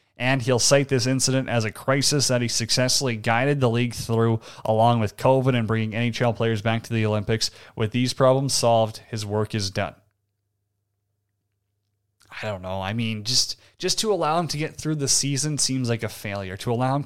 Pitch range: 105-125 Hz